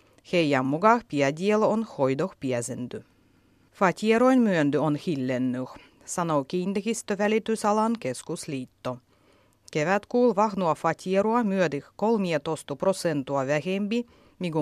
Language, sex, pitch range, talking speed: Finnish, female, 140-205 Hz, 95 wpm